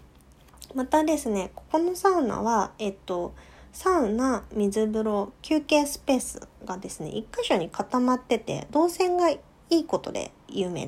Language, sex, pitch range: Japanese, female, 195-320 Hz